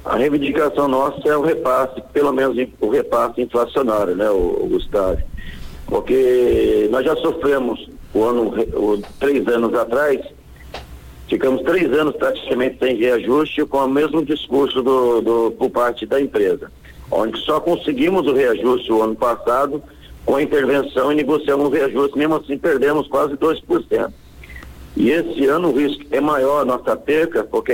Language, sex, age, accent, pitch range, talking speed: Portuguese, male, 60-79, Brazilian, 120-175 Hz, 155 wpm